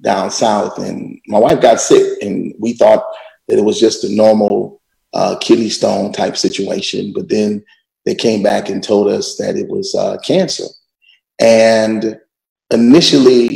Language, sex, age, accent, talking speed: English, male, 30-49, American, 160 wpm